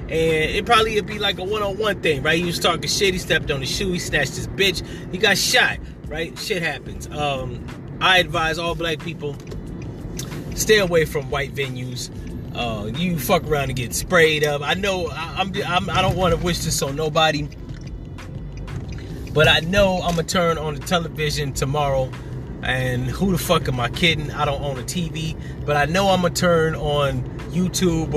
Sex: male